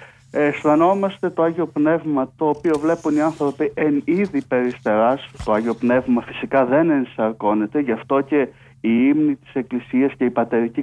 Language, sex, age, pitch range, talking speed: Greek, male, 60-79, 130-165 Hz, 150 wpm